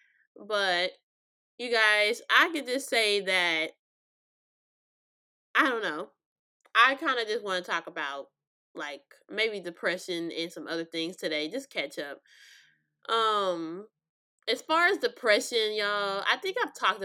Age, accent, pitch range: 20-39, American, 175-235 Hz